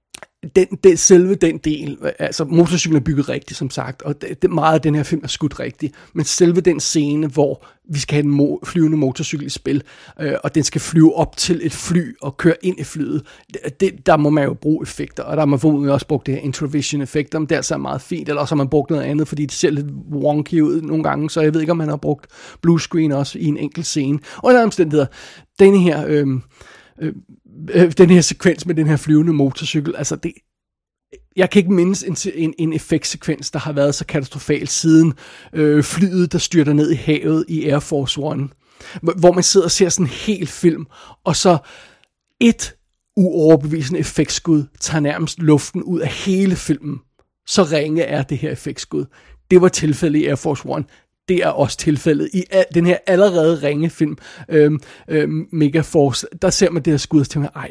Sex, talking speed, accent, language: male, 210 wpm, native, Danish